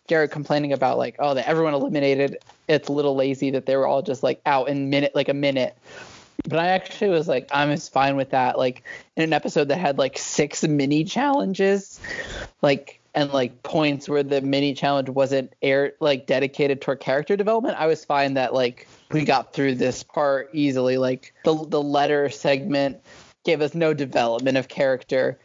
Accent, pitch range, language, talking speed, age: American, 130-145 Hz, English, 190 wpm, 20-39